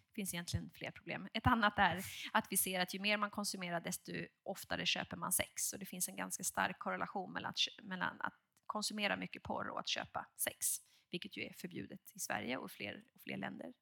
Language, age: Swedish, 20-39